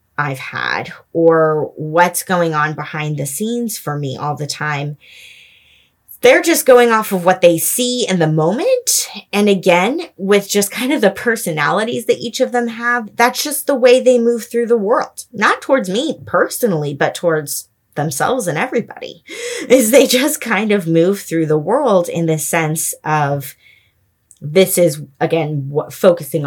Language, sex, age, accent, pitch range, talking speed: English, female, 20-39, American, 150-230 Hz, 165 wpm